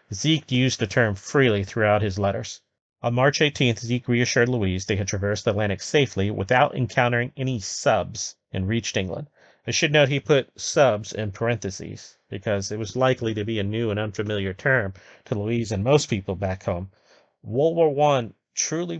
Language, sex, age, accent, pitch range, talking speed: English, male, 30-49, American, 105-130 Hz, 180 wpm